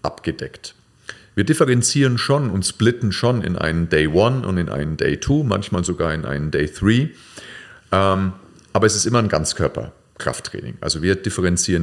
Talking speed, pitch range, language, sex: 160 wpm, 80-105 Hz, German, male